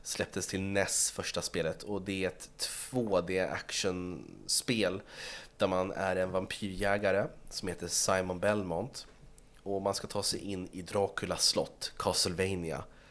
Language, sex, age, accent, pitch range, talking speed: Swedish, male, 30-49, native, 90-110 Hz, 135 wpm